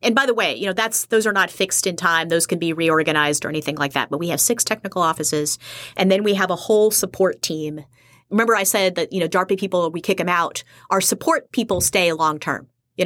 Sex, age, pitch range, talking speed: female, 30-49, 160-200 Hz, 255 wpm